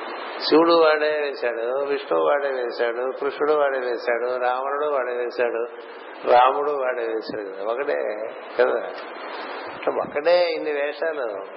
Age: 60-79